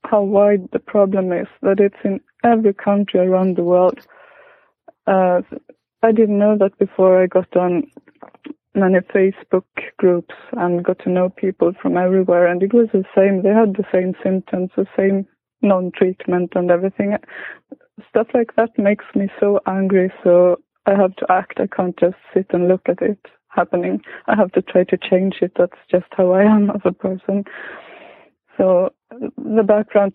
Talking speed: 170 wpm